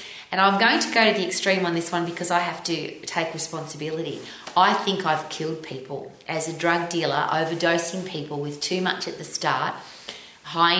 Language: English